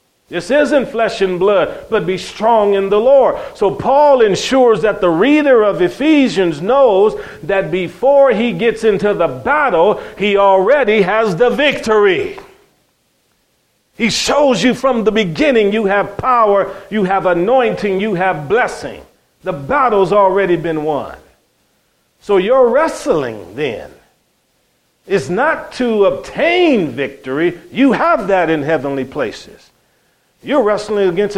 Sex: male